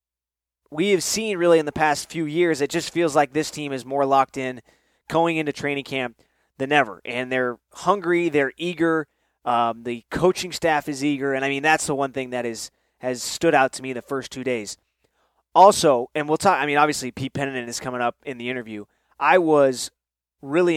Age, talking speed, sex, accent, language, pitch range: 20-39, 210 wpm, male, American, English, 125-150 Hz